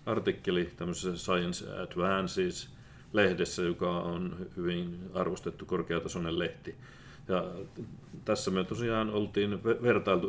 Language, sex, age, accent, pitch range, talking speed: Finnish, male, 40-59, native, 90-105 Hz, 80 wpm